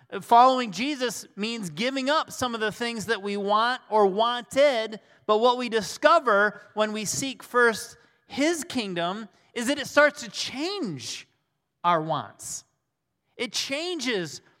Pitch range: 175-255 Hz